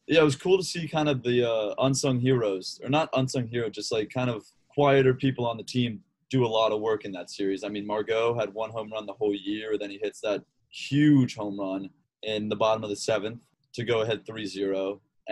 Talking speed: 240 wpm